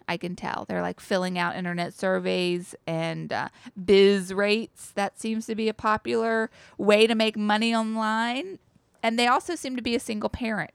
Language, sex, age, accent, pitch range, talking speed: English, female, 20-39, American, 180-225 Hz, 185 wpm